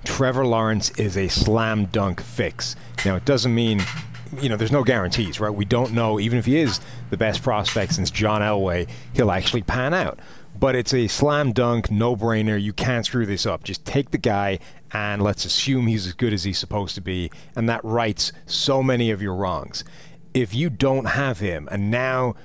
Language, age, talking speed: English, 30-49, 205 wpm